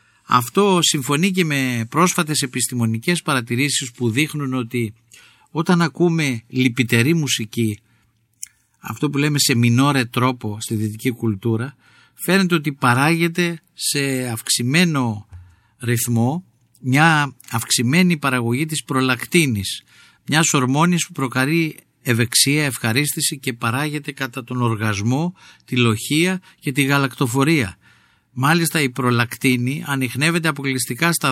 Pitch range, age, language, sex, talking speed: 115-150 Hz, 50-69, Greek, male, 105 wpm